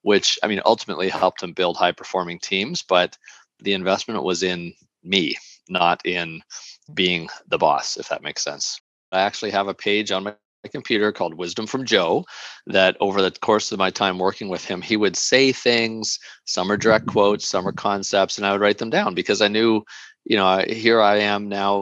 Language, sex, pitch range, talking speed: English, male, 95-110 Hz, 200 wpm